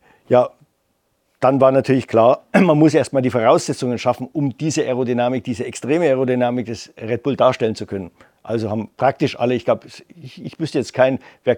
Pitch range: 120-140 Hz